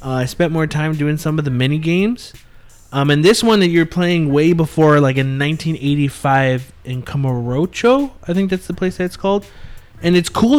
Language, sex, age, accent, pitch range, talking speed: English, male, 20-39, American, 130-160 Hz, 200 wpm